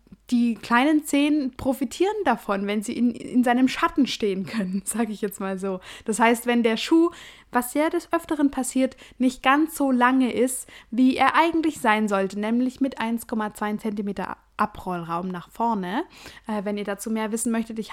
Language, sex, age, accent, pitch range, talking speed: German, female, 20-39, German, 215-260 Hz, 175 wpm